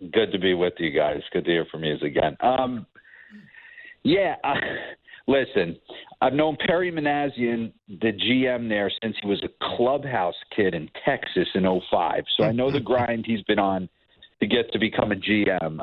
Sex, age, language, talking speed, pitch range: male, 50-69, English, 180 wpm, 105-140 Hz